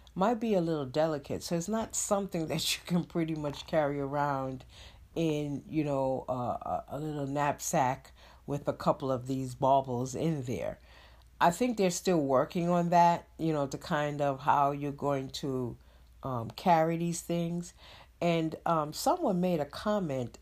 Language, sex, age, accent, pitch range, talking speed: English, female, 50-69, American, 140-175 Hz, 170 wpm